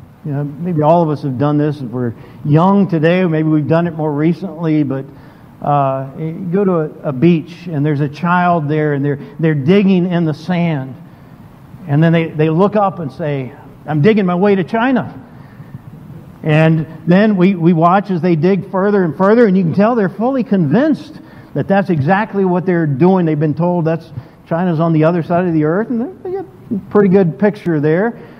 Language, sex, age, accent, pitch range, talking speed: English, male, 50-69, American, 150-200 Hz, 205 wpm